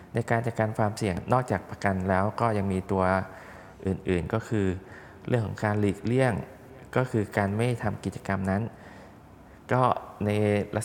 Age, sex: 20-39, male